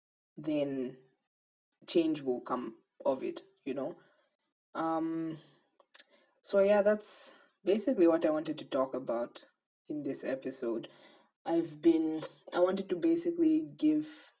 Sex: female